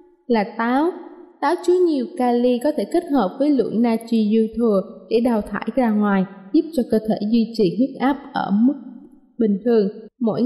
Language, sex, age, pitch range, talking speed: Vietnamese, female, 20-39, 220-275 Hz, 190 wpm